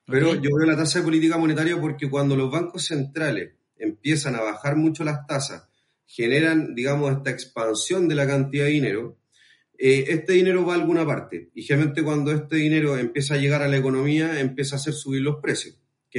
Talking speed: 195 wpm